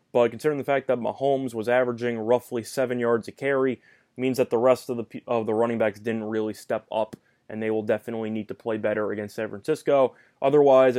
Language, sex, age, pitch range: English, male, 20-39, 110-135 Hz